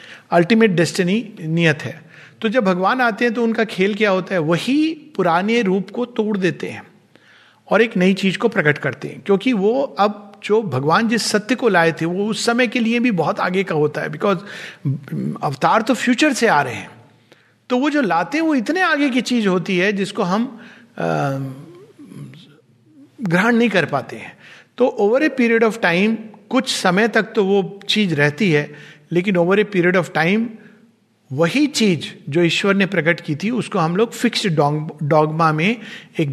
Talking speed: 185 wpm